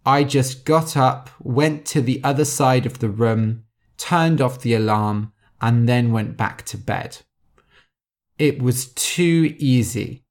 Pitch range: 115-150 Hz